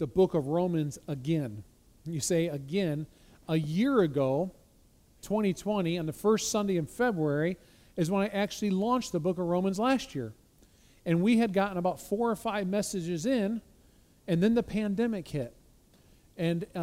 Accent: American